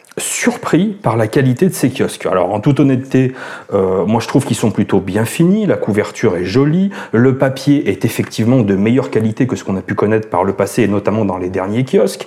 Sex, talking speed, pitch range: male, 225 wpm, 110-150 Hz